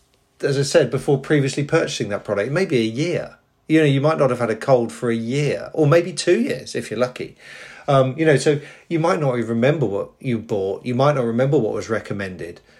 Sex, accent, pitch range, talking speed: male, British, 110-135 Hz, 230 wpm